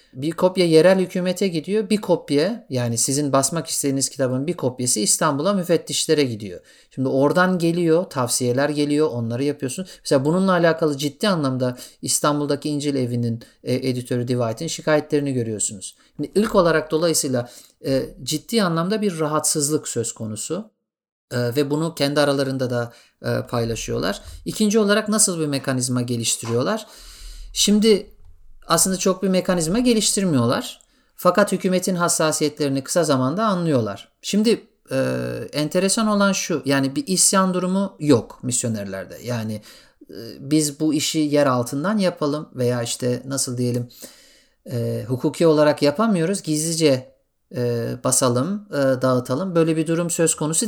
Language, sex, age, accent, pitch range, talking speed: English, male, 50-69, Turkish, 130-185 Hz, 135 wpm